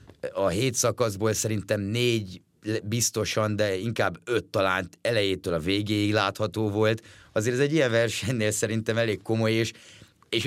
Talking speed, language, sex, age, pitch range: 145 wpm, Hungarian, male, 30-49, 100-120 Hz